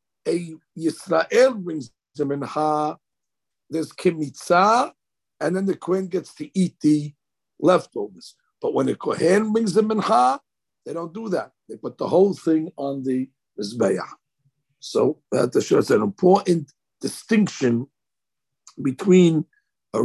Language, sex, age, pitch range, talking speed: English, male, 60-79, 150-205 Hz, 125 wpm